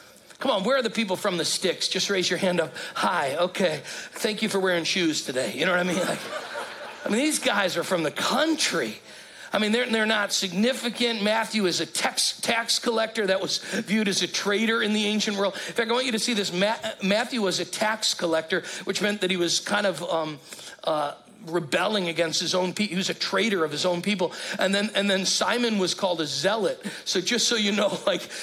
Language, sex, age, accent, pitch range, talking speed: English, male, 40-59, American, 180-220 Hz, 225 wpm